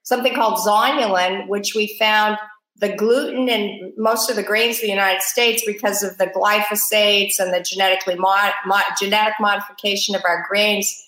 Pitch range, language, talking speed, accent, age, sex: 190-230 Hz, English, 170 wpm, American, 50-69, female